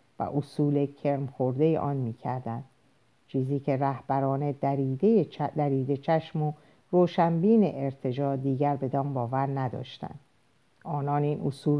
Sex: female